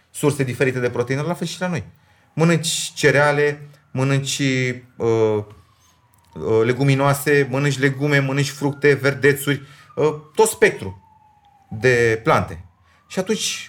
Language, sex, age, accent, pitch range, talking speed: Romanian, male, 30-49, native, 110-170 Hz, 115 wpm